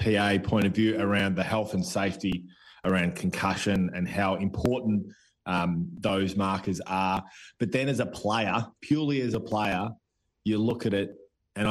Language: English